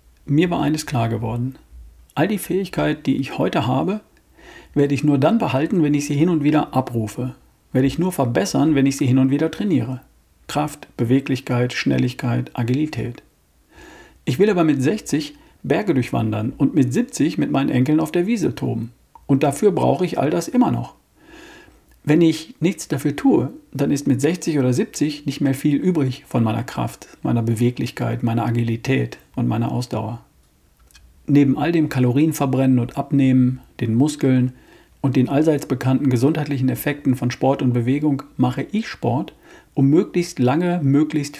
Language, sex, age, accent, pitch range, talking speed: German, male, 50-69, German, 125-155 Hz, 165 wpm